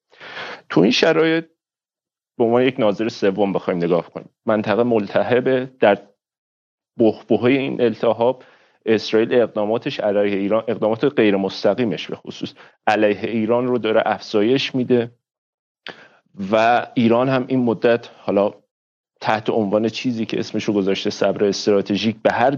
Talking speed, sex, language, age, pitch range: 130 wpm, male, Persian, 40-59, 105-135 Hz